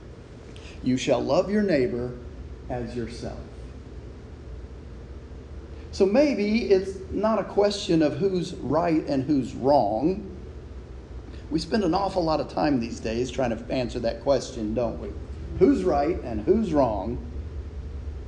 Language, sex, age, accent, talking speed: English, male, 40-59, American, 130 wpm